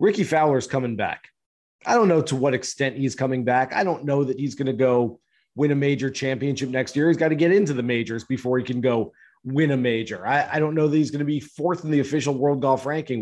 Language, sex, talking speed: English, male, 260 wpm